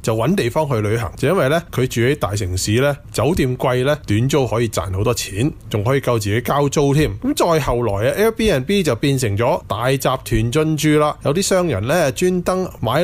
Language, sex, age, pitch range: Chinese, male, 20-39, 115-180 Hz